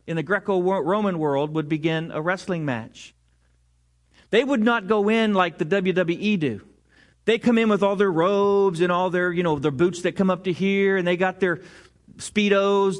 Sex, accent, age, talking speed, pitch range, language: male, American, 40-59, 195 wpm, 165-220 Hz, English